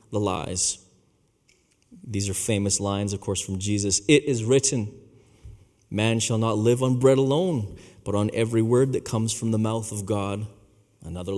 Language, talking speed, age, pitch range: English, 170 wpm, 30-49, 100-125 Hz